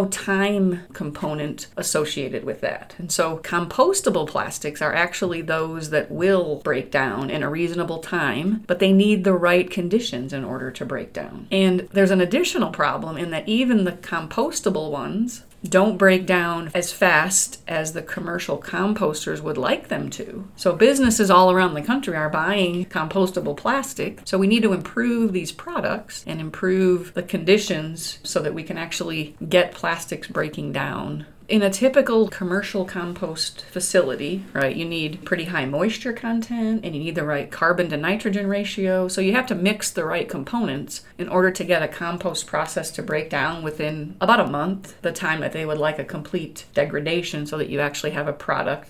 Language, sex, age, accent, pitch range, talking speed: English, female, 30-49, American, 155-195 Hz, 180 wpm